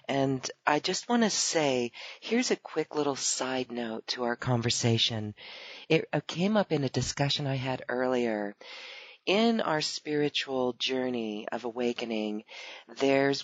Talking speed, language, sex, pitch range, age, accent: 140 wpm, English, female, 125-155 Hz, 40-59, American